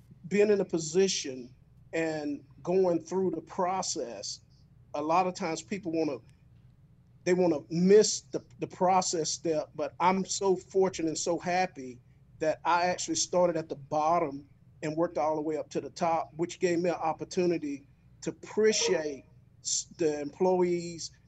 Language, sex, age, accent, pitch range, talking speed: English, male, 40-59, American, 145-180 Hz, 160 wpm